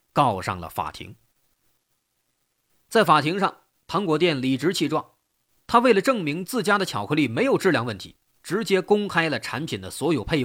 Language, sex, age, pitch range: Chinese, male, 30-49, 110-185 Hz